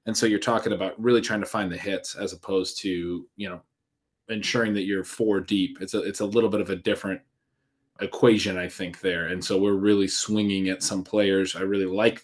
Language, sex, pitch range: English, male, 100-120 Hz